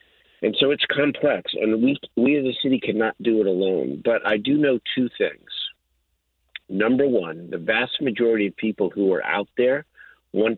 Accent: American